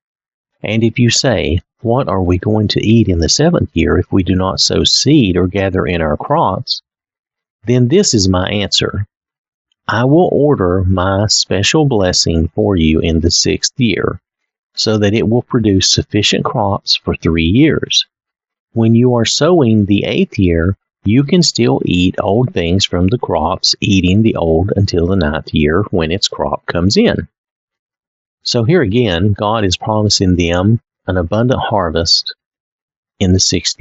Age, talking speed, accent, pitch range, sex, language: 50-69, 165 wpm, American, 85-110 Hz, male, English